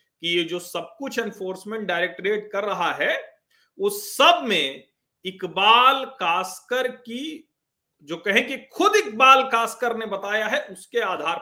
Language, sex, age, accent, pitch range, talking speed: Hindi, male, 40-59, native, 160-265 Hz, 140 wpm